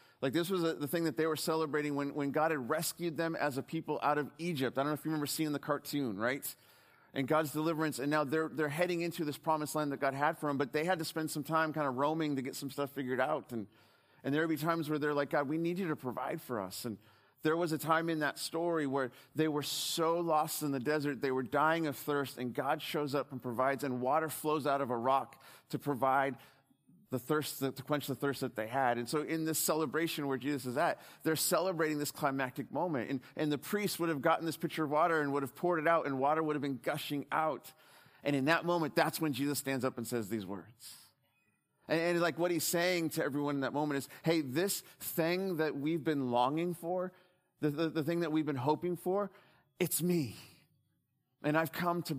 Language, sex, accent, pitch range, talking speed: English, male, American, 135-160 Hz, 245 wpm